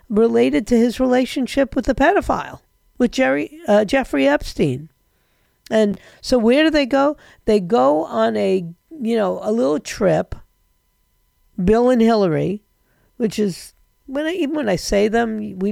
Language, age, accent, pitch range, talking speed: English, 50-69, American, 170-245 Hz, 155 wpm